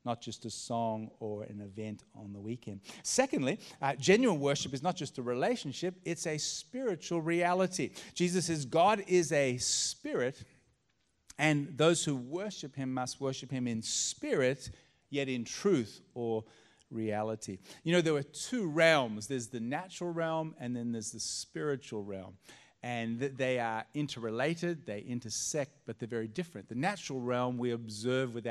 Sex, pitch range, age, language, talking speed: male, 120-175 Hz, 40-59, English, 160 wpm